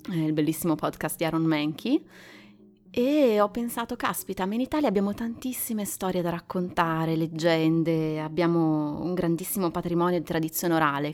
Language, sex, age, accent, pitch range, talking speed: Italian, female, 20-39, native, 155-185 Hz, 140 wpm